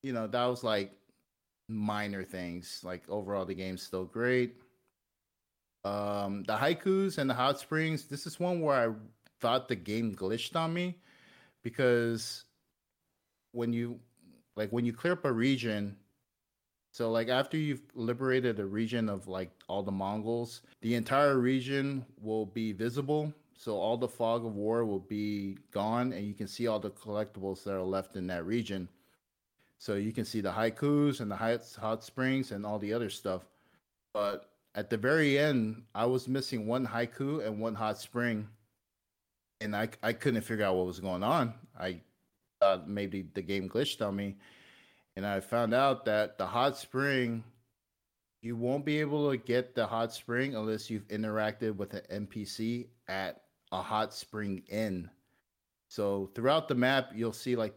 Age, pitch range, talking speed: 30-49, 100-125 Hz, 170 wpm